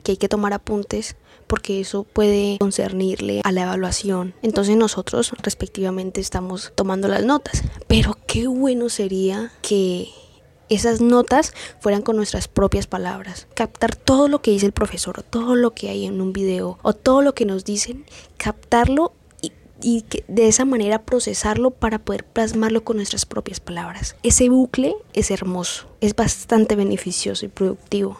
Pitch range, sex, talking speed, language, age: 190-225 Hz, female, 155 wpm, Spanish, 20-39